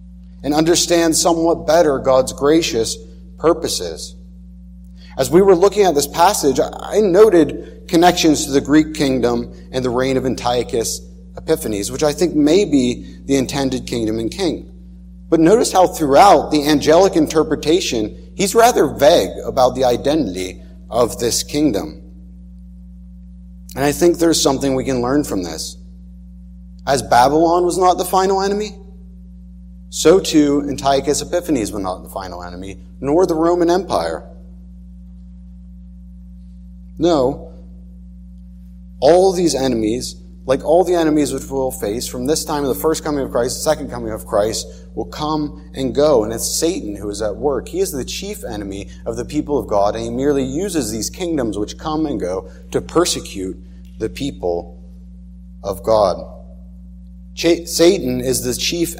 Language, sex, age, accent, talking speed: English, male, 30-49, American, 155 wpm